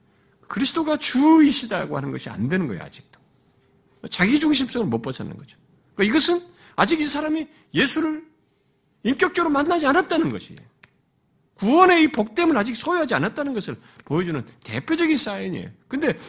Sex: male